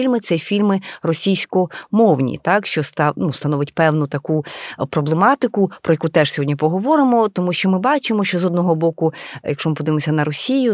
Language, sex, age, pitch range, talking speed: Ukrainian, female, 30-49, 155-200 Hz, 170 wpm